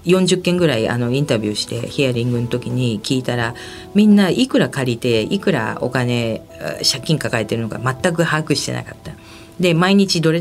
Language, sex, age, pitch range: Japanese, female, 40-59, 115-170 Hz